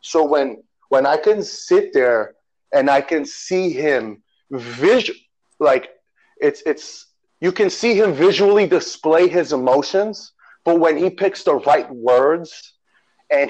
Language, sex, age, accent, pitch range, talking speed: English, male, 30-49, American, 145-205 Hz, 140 wpm